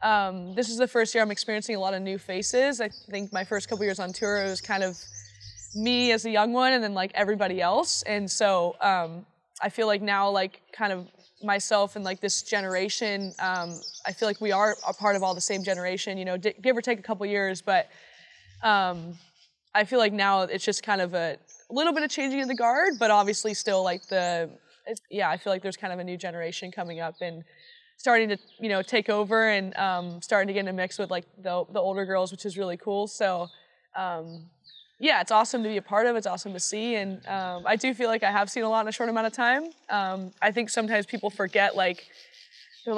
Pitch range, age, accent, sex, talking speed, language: 185-230 Hz, 20-39, American, female, 240 wpm, English